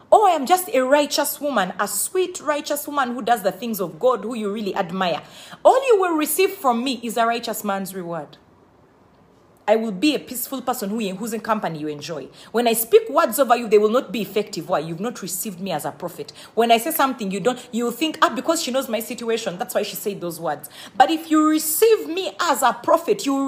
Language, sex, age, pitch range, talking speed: English, female, 40-59, 215-310 Hz, 235 wpm